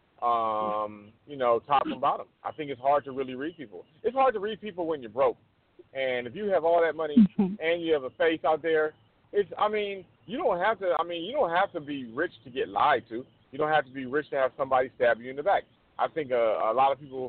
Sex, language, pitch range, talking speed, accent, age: male, English, 125-160 Hz, 265 wpm, American, 40-59